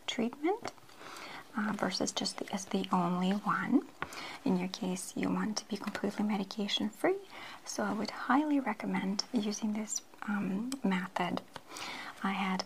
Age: 30-49